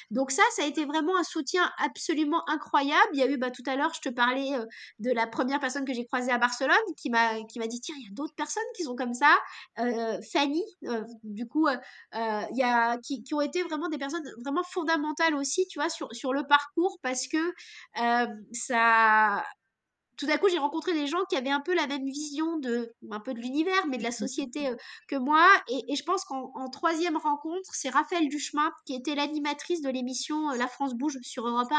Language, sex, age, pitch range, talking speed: French, female, 20-39, 235-305 Hz, 225 wpm